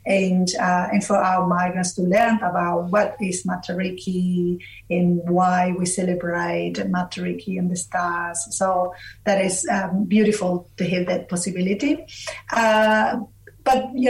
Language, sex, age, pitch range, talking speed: English, female, 30-49, 180-215 Hz, 135 wpm